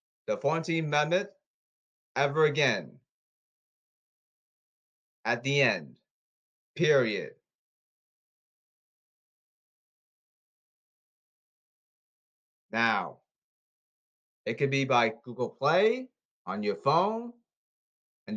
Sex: male